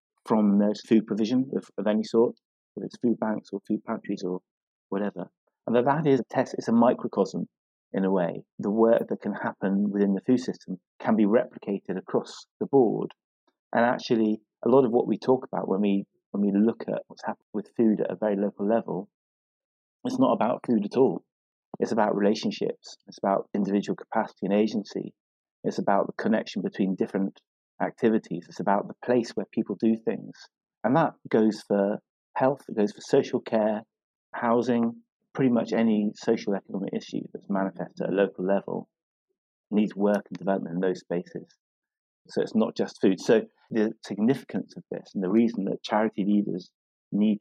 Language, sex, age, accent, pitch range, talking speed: English, male, 30-49, British, 100-115 Hz, 180 wpm